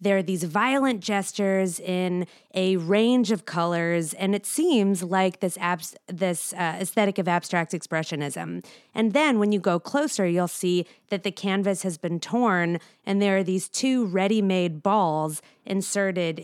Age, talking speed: 20-39, 160 wpm